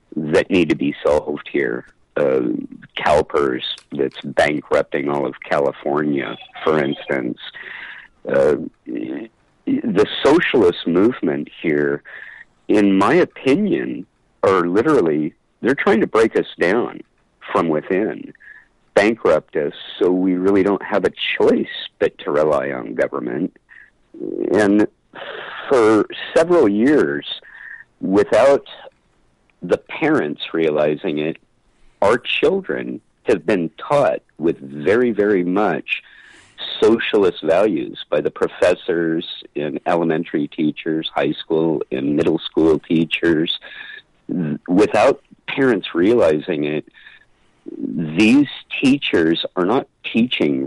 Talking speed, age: 105 wpm, 50-69